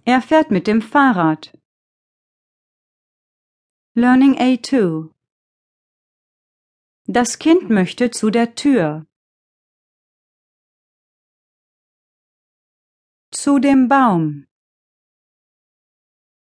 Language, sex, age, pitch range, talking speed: English, female, 30-49, 170-270 Hz, 60 wpm